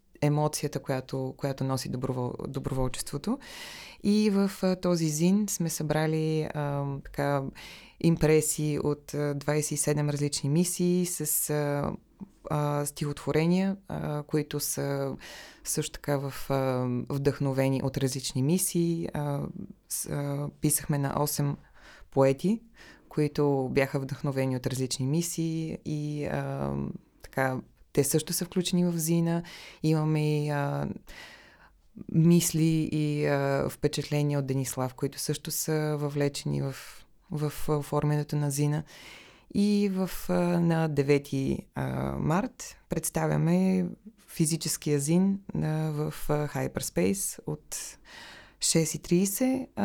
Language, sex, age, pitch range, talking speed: Bulgarian, female, 20-39, 140-170 Hz, 105 wpm